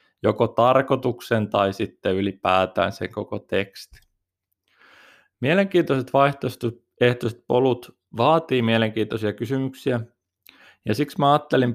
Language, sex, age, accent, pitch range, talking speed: Finnish, male, 20-39, native, 105-135 Hz, 90 wpm